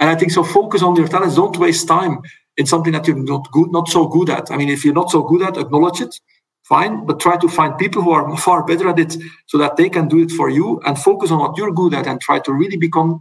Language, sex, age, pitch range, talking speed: English, male, 50-69, 150-180 Hz, 285 wpm